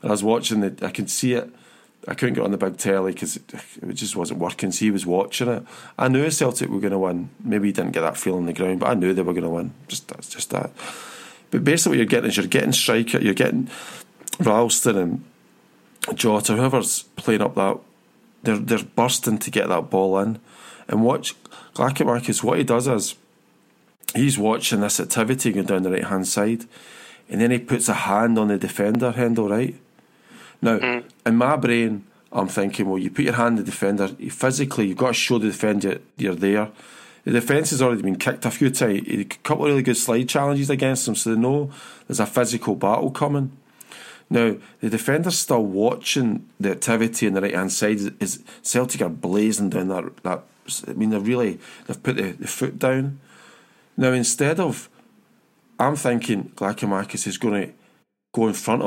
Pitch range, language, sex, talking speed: 100-125 Hz, English, male, 205 wpm